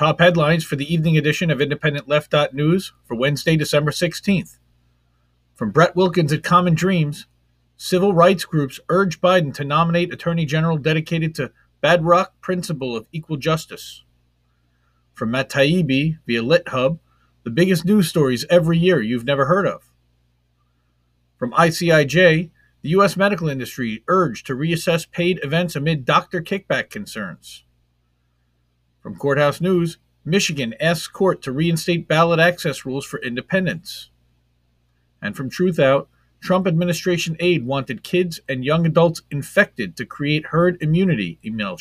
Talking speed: 135 wpm